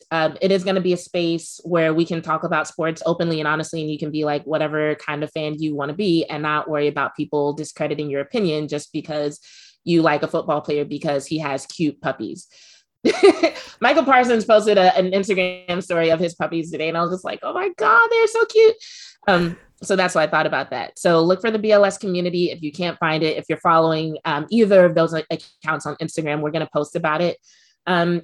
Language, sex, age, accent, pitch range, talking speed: English, female, 20-39, American, 155-180 Hz, 225 wpm